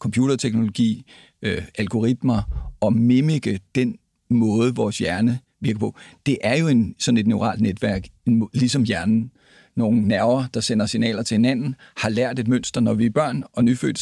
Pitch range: 115-135 Hz